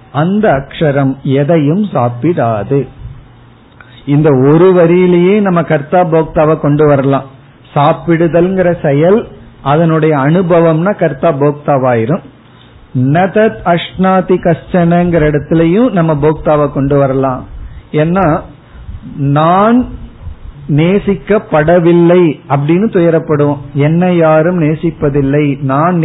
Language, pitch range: Tamil, 135-180 Hz